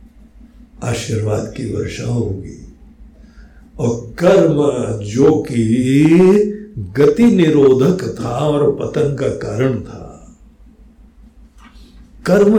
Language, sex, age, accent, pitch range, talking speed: Hindi, male, 60-79, native, 110-145 Hz, 80 wpm